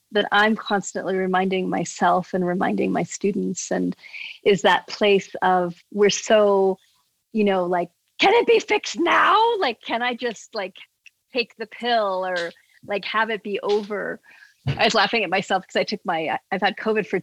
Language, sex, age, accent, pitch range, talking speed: English, female, 40-59, American, 185-230 Hz, 180 wpm